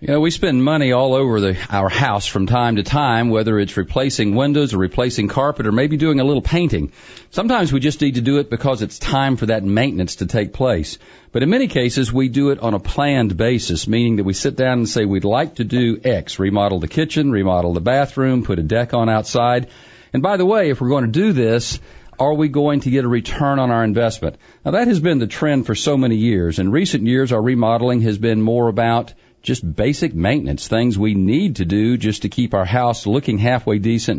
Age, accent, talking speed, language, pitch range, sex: 40-59, American, 230 wpm, English, 105-140 Hz, male